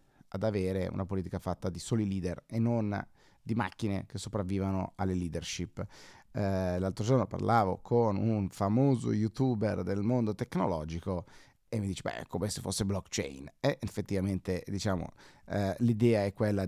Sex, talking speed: male, 160 wpm